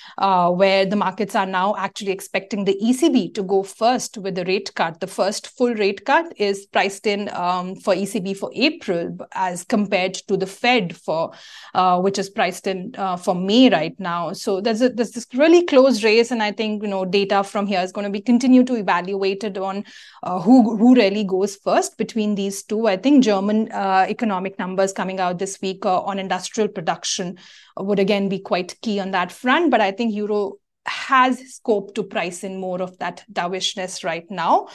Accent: Indian